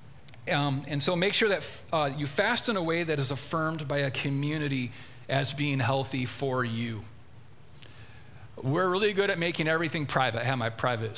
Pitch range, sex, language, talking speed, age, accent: 130-170 Hz, male, English, 185 wpm, 40-59, American